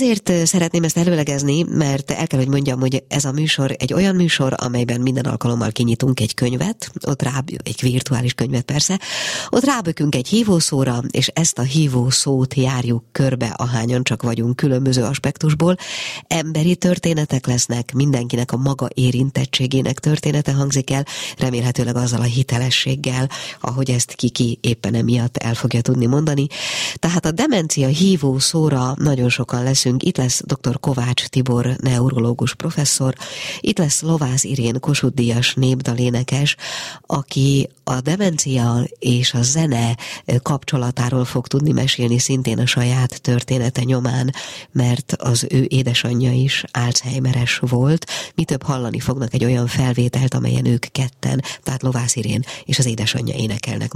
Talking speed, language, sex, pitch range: 140 wpm, Hungarian, female, 125-145 Hz